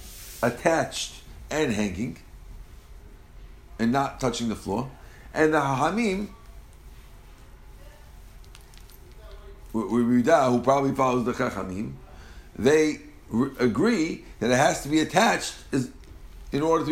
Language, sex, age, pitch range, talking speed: English, male, 50-69, 120-155 Hz, 95 wpm